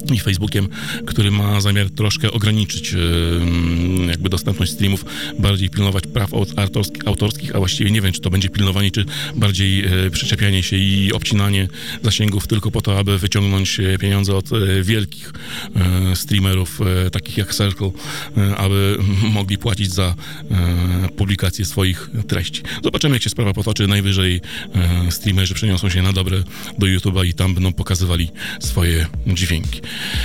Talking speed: 135 wpm